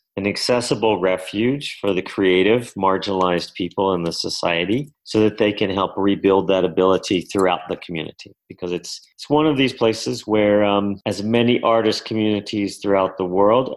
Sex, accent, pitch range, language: male, American, 95-110 Hz, English